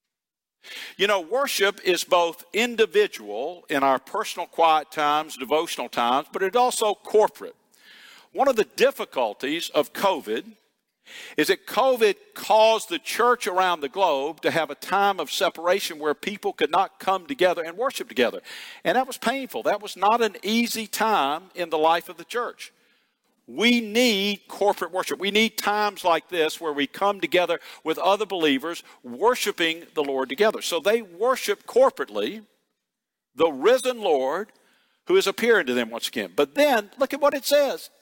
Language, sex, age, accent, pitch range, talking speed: English, male, 50-69, American, 170-240 Hz, 165 wpm